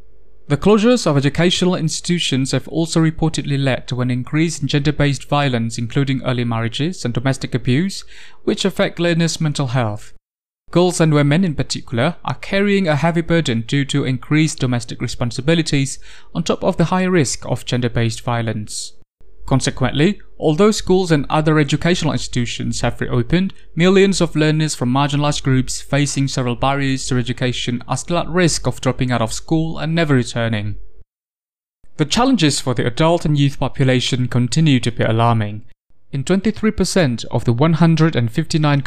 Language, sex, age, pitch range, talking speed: Indonesian, male, 20-39, 125-165 Hz, 155 wpm